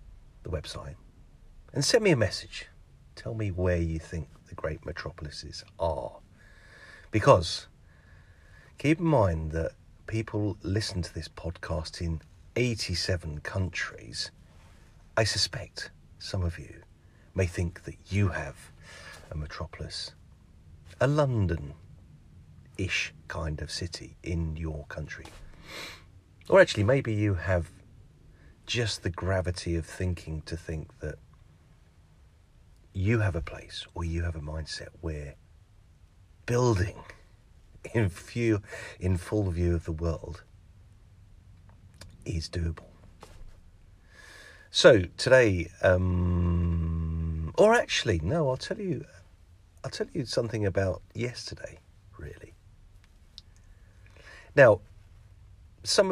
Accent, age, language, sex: British, 40-59, English, male